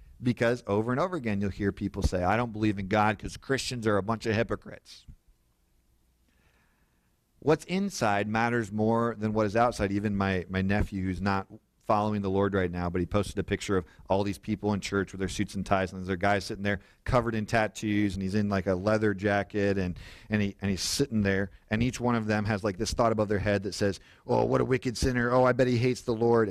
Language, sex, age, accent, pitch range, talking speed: English, male, 40-59, American, 90-110 Hz, 240 wpm